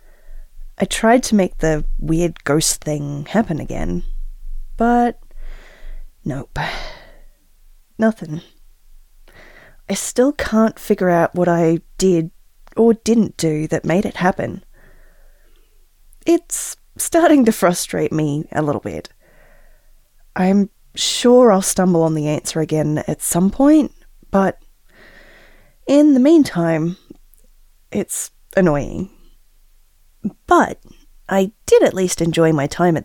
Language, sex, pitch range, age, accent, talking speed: English, female, 155-215 Hz, 20-39, Australian, 115 wpm